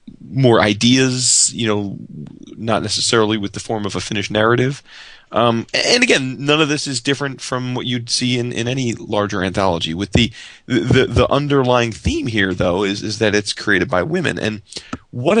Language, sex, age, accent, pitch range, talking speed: English, male, 30-49, American, 100-120 Hz, 185 wpm